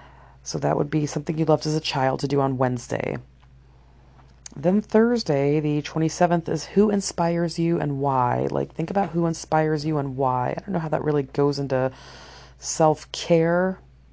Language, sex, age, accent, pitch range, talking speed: English, female, 30-49, American, 130-155 Hz, 175 wpm